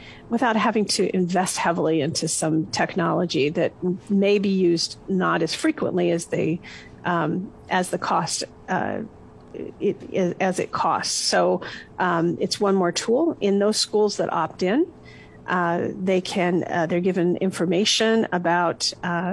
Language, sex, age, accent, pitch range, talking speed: English, female, 50-69, American, 175-210 Hz, 150 wpm